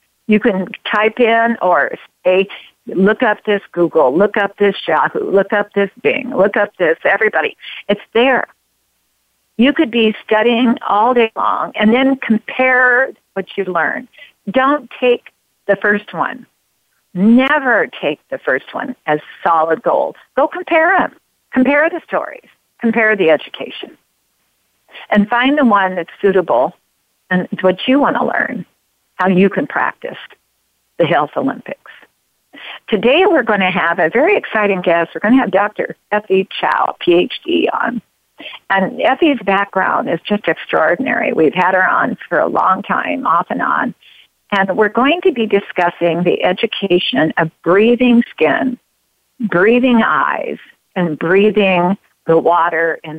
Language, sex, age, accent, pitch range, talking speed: English, female, 50-69, American, 185-245 Hz, 150 wpm